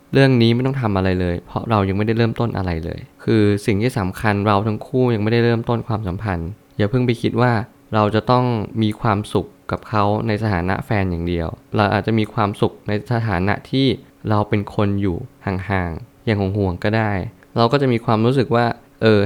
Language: Thai